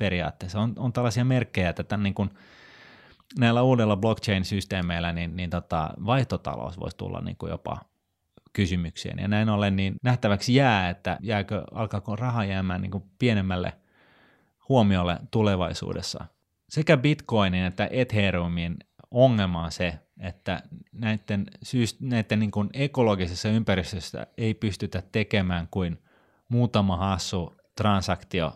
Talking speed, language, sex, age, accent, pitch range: 120 wpm, Finnish, male, 30-49, native, 90-105 Hz